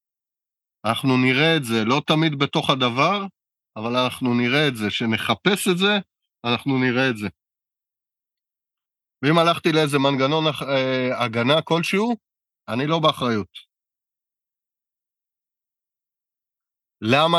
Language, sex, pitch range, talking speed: Hebrew, male, 120-150 Hz, 105 wpm